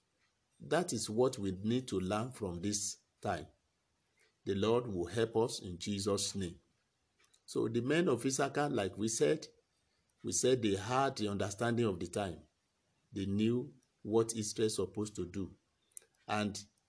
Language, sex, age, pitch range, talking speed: English, male, 50-69, 100-125 Hz, 155 wpm